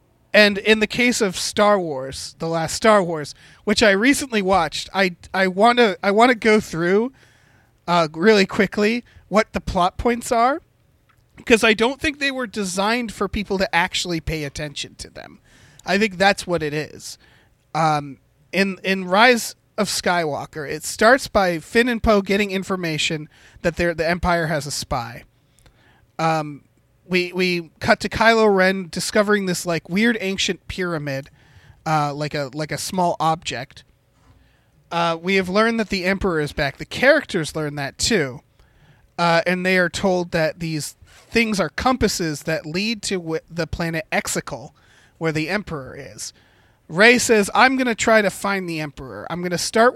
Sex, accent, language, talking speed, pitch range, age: male, American, English, 170 wpm, 155-210 Hz, 30-49